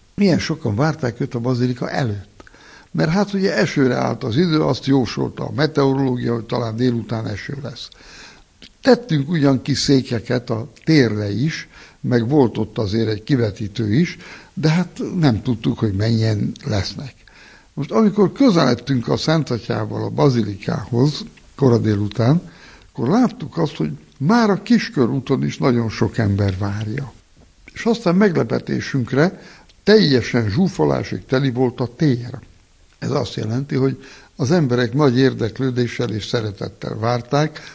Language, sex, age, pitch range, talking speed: Hungarian, male, 60-79, 115-155 Hz, 135 wpm